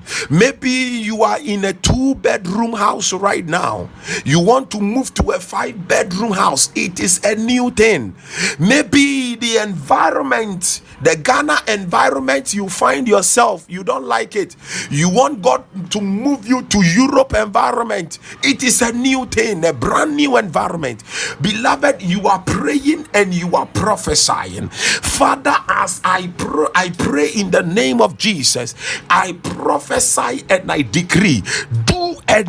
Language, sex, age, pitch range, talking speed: English, male, 50-69, 185-255 Hz, 150 wpm